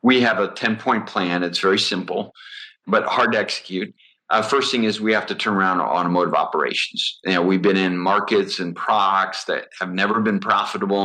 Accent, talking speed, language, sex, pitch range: American, 185 wpm, English, male, 90-115 Hz